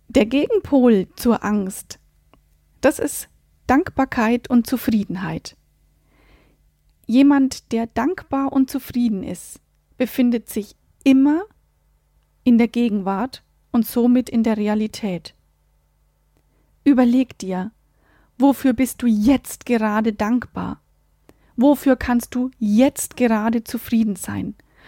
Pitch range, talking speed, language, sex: 220-275 Hz, 100 wpm, German, female